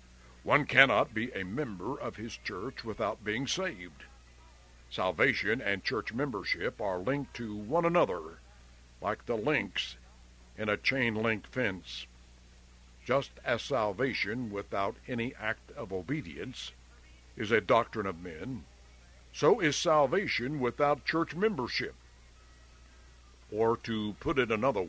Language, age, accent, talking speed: English, 60-79, American, 125 wpm